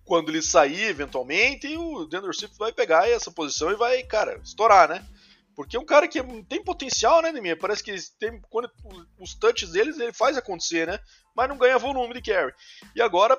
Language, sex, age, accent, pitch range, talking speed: Portuguese, male, 20-39, Brazilian, 170-260 Hz, 195 wpm